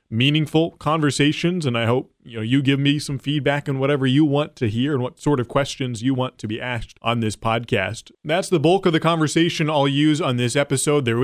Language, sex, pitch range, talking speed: English, male, 120-145 Hz, 230 wpm